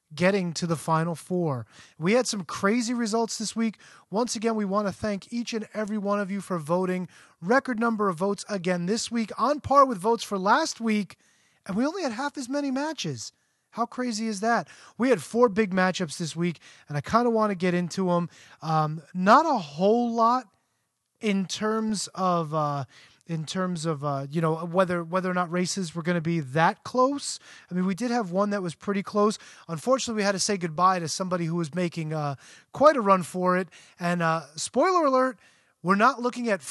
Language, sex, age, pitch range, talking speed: English, male, 30-49, 175-225 Hz, 210 wpm